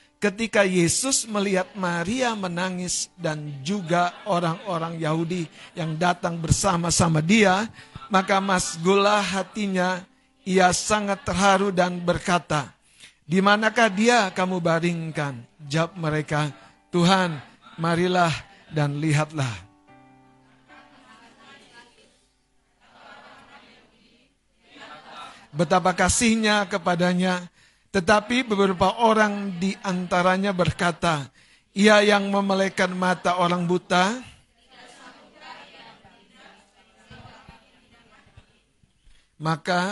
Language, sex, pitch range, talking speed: Indonesian, male, 165-200 Hz, 70 wpm